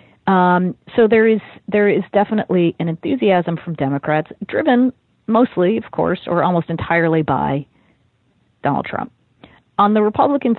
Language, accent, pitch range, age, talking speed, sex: English, American, 150-195 Hz, 40-59, 135 wpm, female